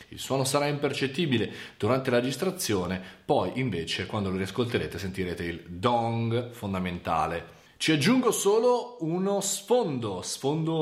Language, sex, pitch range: Italian, male, 110-160 Hz